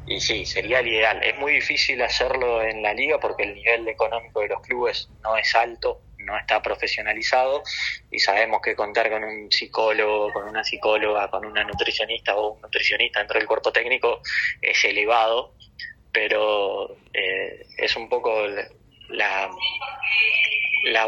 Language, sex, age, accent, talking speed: Spanish, male, 20-39, Argentinian, 155 wpm